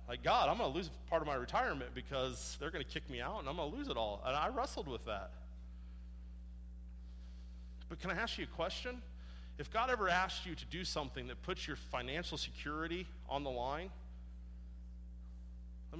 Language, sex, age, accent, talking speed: English, male, 40-59, American, 200 wpm